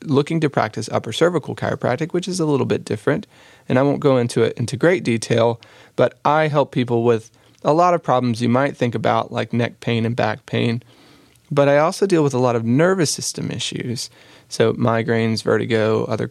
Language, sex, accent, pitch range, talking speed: English, male, American, 115-135 Hz, 200 wpm